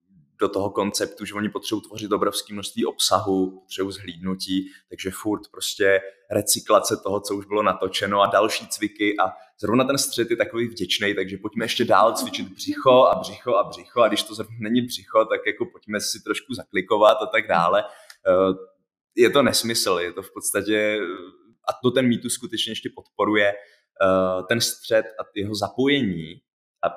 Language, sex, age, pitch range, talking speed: Czech, male, 20-39, 95-115 Hz, 170 wpm